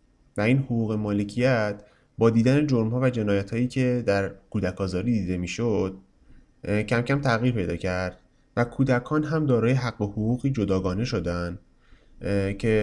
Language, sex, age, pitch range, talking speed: Persian, male, 30-49, 100-135 Hz, 145 wpm